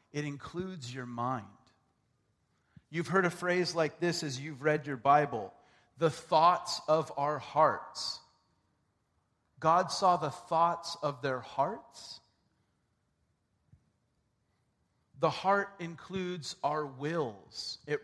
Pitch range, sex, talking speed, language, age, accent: 130-165 Hz, male, 110 wpm, English, 40-59, American